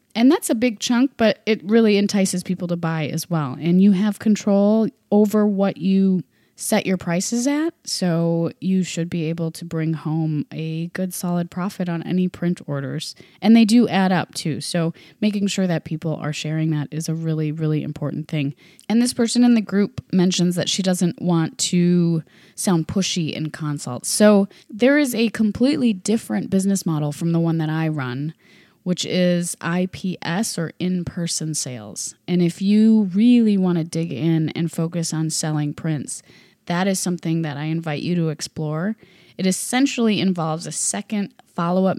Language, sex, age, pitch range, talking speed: English, female, 20-39, 160-200 Hz, 180 wpm